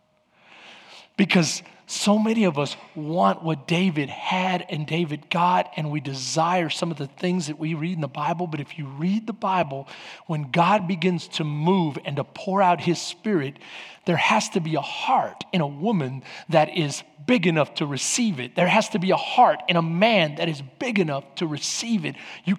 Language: English